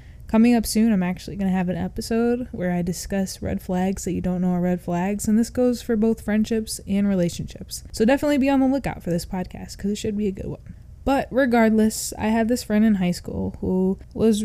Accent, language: American, English